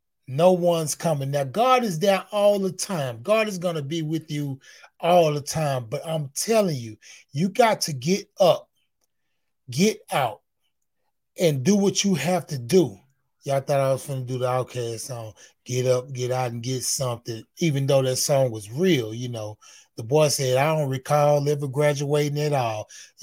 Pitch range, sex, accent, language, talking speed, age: 135-185 Hz, male, American, English, 190 wpm, 30-49